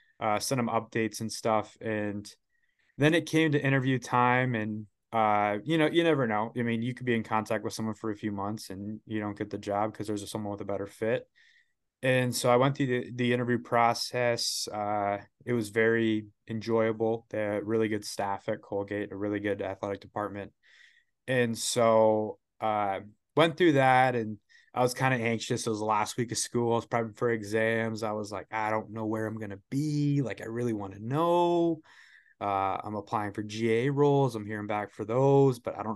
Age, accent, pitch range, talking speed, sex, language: 20-39, American, 105-125 Hz, 215 wpm, male, English